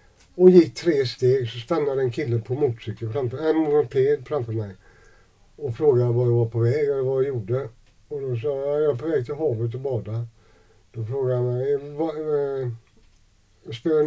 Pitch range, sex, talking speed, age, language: 115-145 Hz, male, 180 wpm, 60-79, Swedish